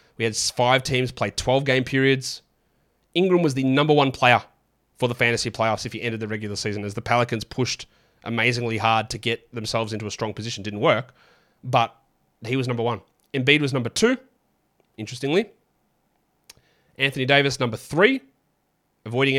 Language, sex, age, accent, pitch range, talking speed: English, male, 20-39, Australian, 120-140 Hz, 165 wpm